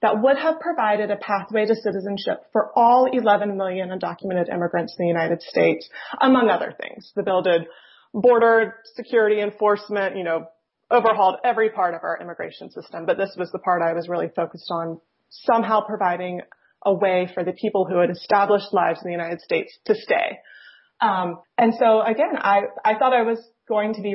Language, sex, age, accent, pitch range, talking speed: English, female, 30-49, American, 185-220 Hz, 185 wpm